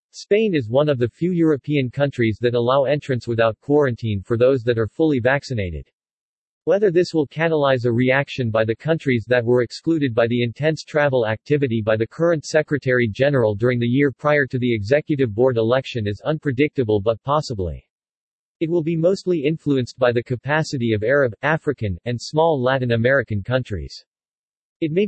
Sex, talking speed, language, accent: male, 170 wpm, English, American